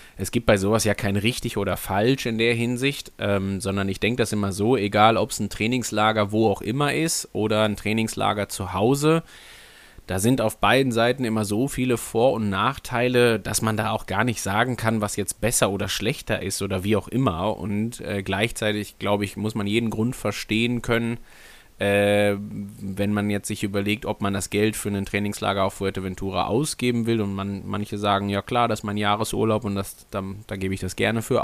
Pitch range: 100-115 Hz